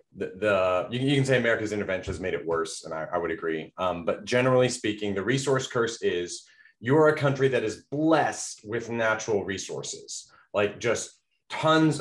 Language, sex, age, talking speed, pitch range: English, male, 30-49, 180 wpm, 105-140 Hz